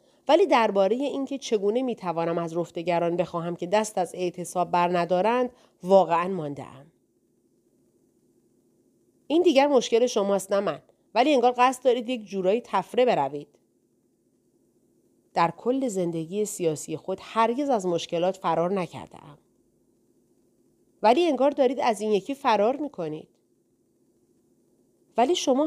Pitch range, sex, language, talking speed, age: 175-240 Hz, female, Persian, 125 wpm, 30-49